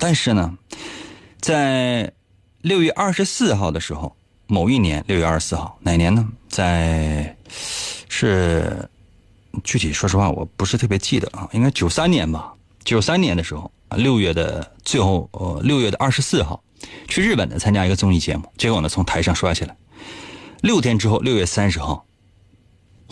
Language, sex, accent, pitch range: Chinese, male, native, 90-130 Hz